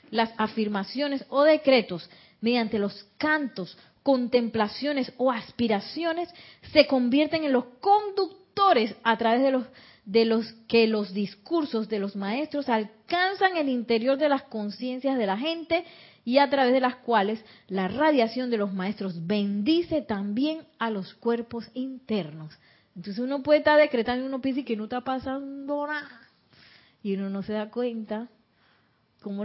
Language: Spanish